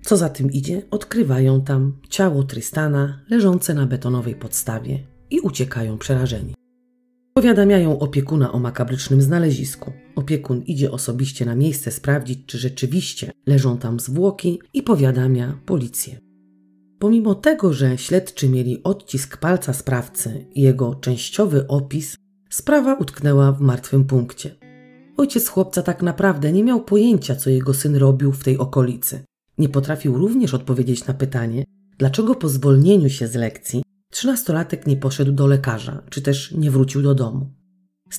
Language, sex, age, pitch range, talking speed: Polish, female, 30-49, 130-185 Hz, 140 wpm